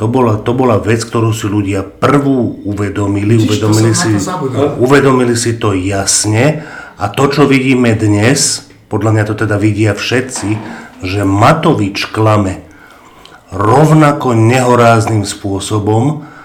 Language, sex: Slovak, male